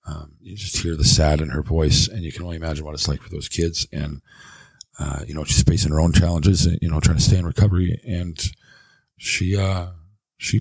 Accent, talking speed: American, 230 wpm